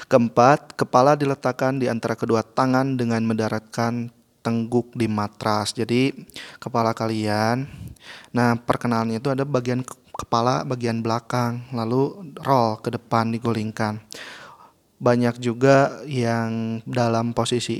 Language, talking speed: Indonesian, 110 wpm